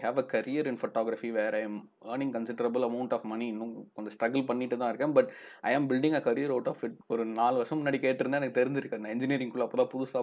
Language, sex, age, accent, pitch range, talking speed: Tamil, male, 20-39, native, 115-135 Hz, 235 wpm